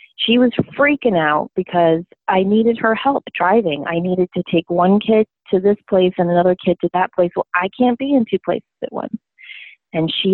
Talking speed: 210 wpm